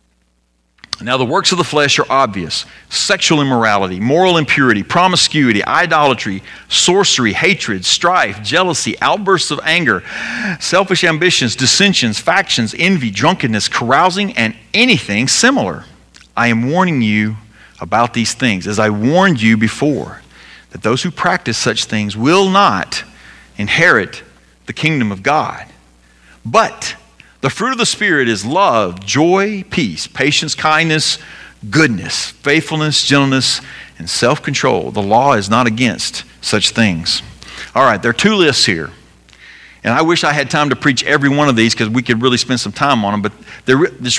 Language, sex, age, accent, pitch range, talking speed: English, male, 40-59, American, 110-155 Hz, 150 wpm